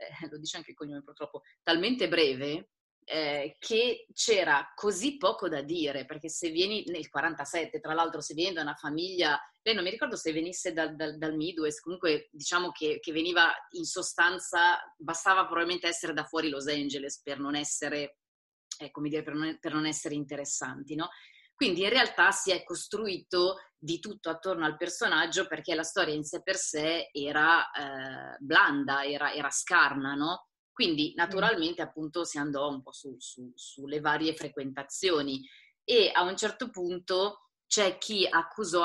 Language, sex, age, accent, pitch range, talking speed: Italian, female, 30-49, native, 145-175 Hz, 165 wpm